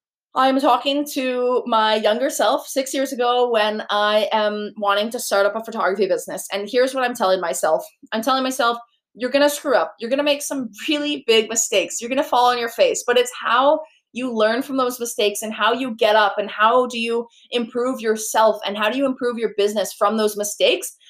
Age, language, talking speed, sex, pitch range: 20-39, English, 210 wpm, female, 210-260 Hz